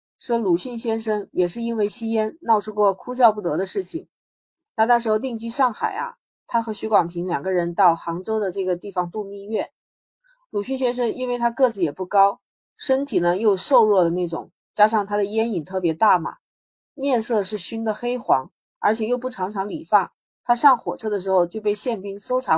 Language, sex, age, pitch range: Chinese, female, 20-39, 180-240 Hz